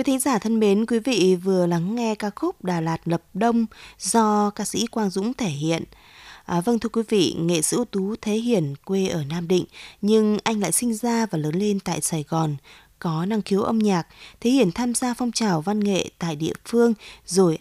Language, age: Vietnamese, 20-39